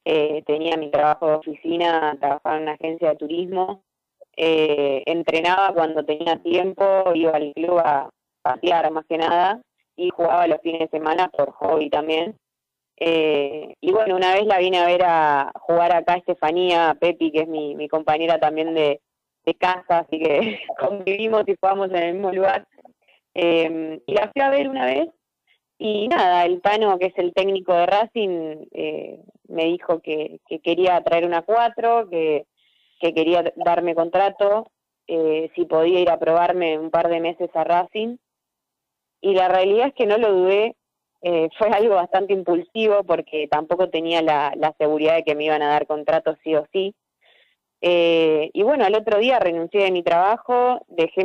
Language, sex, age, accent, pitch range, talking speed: Spanish, female, 20-39, Argentinian, 160-190 Hz, 180 wpm